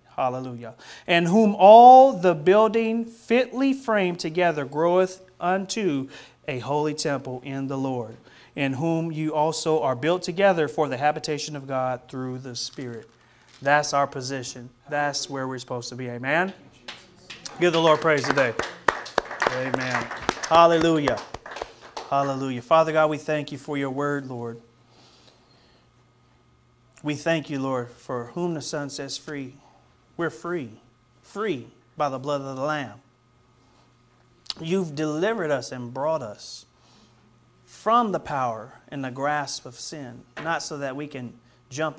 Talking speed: 140 wpm